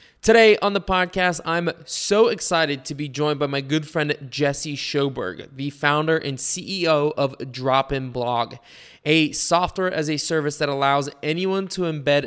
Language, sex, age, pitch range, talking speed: English, male, 20-39, 135-165 Hz, 160 wpm